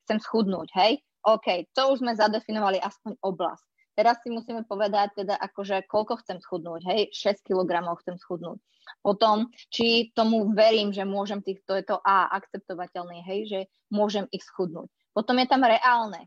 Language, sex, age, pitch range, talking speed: Slovak, female, 20-39, 195-245 Hz, 165 wpm